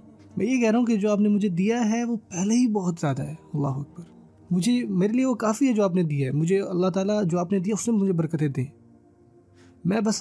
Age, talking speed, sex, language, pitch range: 20-39, 265 wpm, male, Urdu, 145-195 Hz